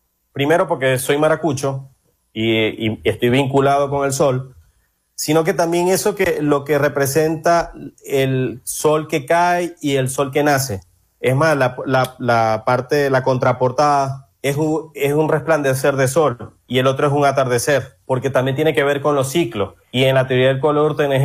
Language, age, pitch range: Spanish, 30-49, 130-160 Hz